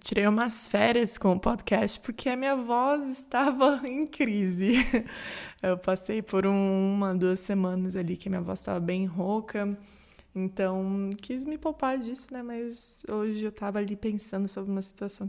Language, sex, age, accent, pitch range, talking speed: Portuguese, female, 20-39, Brazilian, 195-240 Hz, 165 wpm